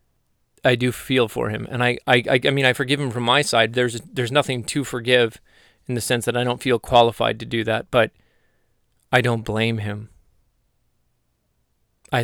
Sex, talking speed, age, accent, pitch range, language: male, 190 wpm, 20-39, American, 110-140 Hz, English